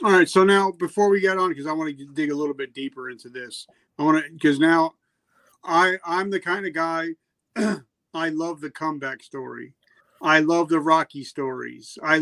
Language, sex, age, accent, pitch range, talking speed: English, male, 40-59, American, 140-175 Hz, 200 wpm